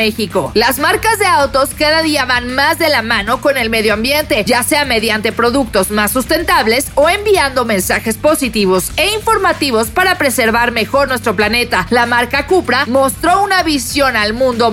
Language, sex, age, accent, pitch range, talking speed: Spanish, female, 40-59, Mexican, 235-315 Hz, 165 wpm